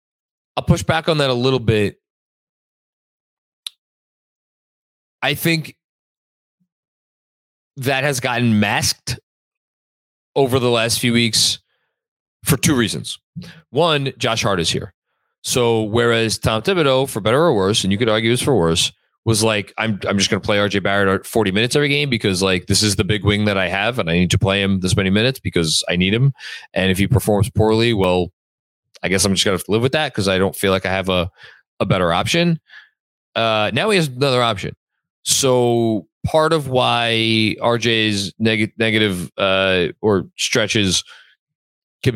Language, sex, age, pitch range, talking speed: English, male, 30-49, 95-125 Hz, 175 wpm